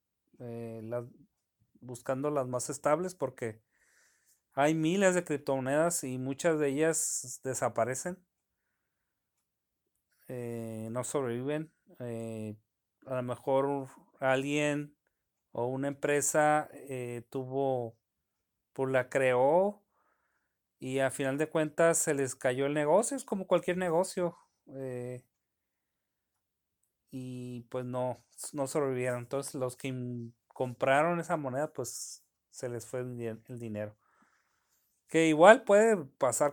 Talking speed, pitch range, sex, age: 115 wpm, 125-155 Hz, male, 40-59